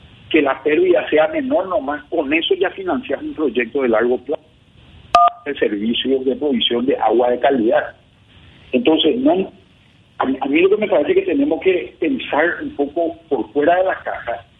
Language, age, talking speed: Spanish, 50-69, 180 wpm